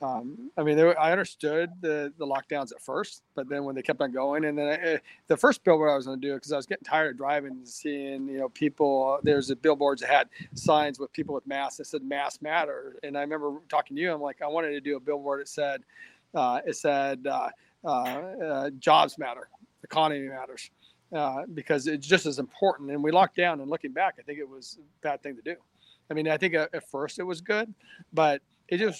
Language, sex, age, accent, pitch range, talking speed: English, male, 40-59, American, 140-170 Hz, 235 wpm